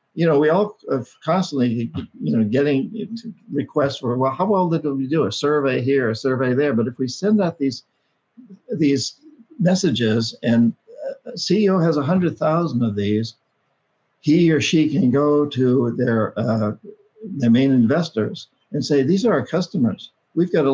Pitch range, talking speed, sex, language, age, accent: 125-170 Hz, 175 wpm, male, English, 60-79, American